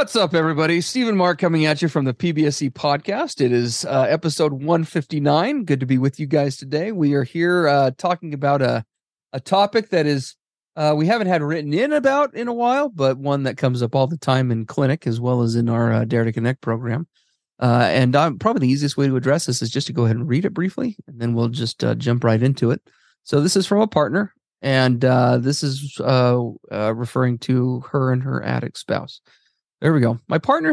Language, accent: English, American